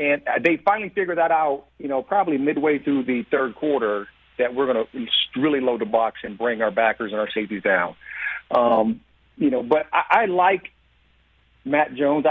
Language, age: English, 50-69